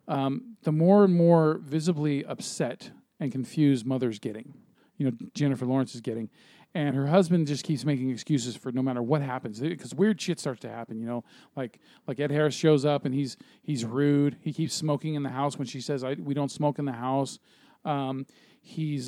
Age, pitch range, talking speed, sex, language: 40-59, 130-165 Hz, 205 wpm, male, English